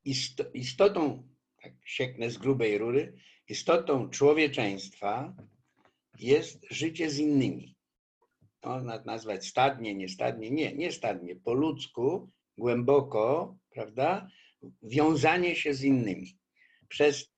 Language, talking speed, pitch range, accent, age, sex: Polish, 100 wpm, 115-150 Hz, native, 60-79, male